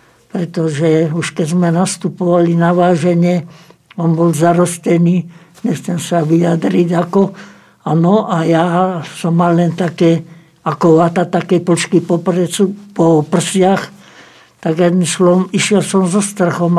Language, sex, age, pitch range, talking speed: Slovak, male, 60-79, 165-185 Hz, 120 wpm